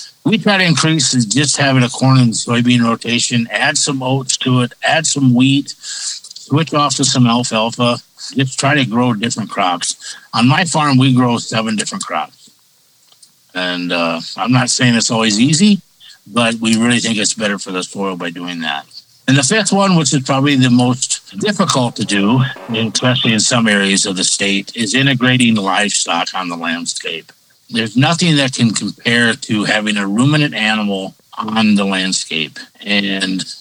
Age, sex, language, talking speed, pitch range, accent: 60-79, male, English, 175 wpm, 105-130 Hz, American